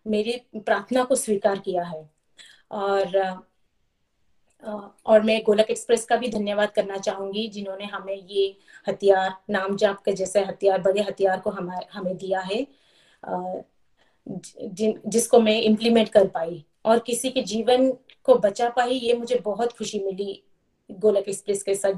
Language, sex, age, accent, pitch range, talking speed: Hindi, female, 30-49, native, 195-235 Hz, 140 wpm